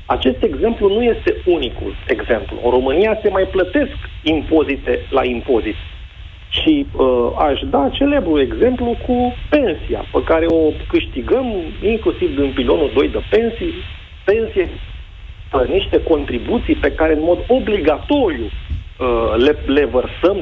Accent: native